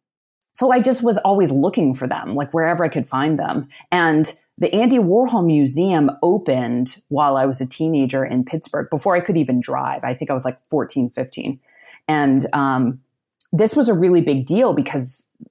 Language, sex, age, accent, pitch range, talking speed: English, female, 30-49, American, 135-170 Hz, 185 wpm